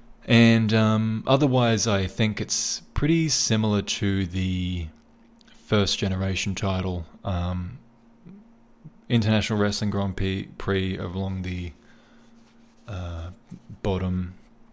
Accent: Australian